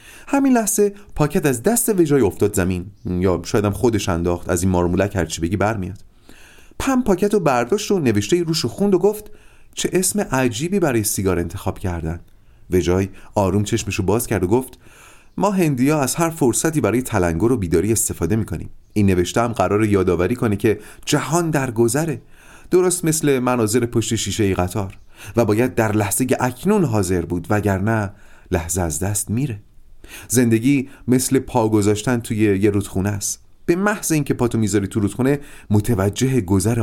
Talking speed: 165 wpm